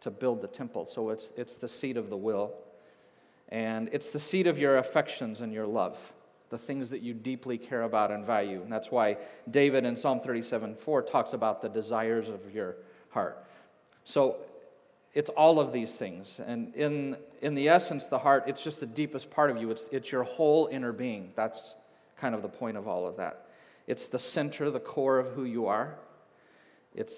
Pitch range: 120-150 Hz